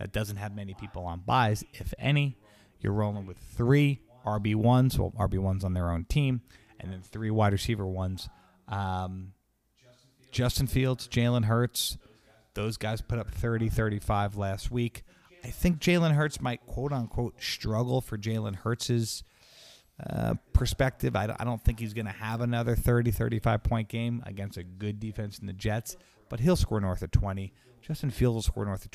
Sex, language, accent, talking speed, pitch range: male, English, American, 170 wpm, 100-125 Hz